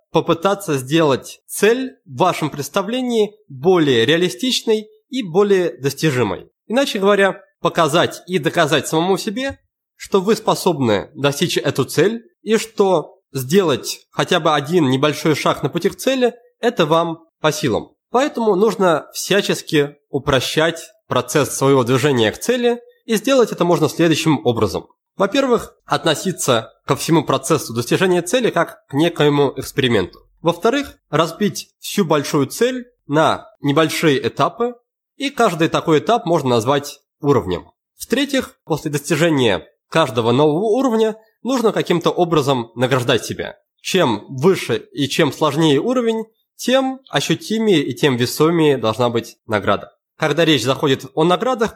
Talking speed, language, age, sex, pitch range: 130 wpm, Russian, 20-39, male, 145-215 Hz